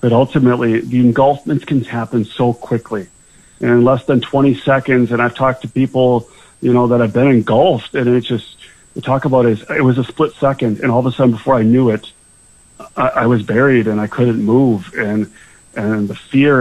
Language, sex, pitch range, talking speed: English, male, 120-135 Hz, 210 wpm